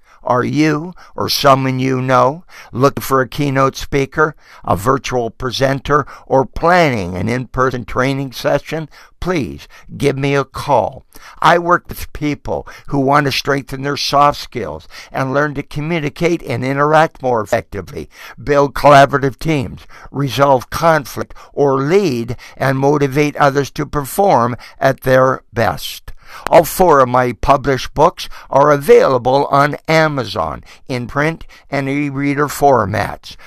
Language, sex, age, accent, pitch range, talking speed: English, male, 60-79, American, 125-150 Hz, 135 wpm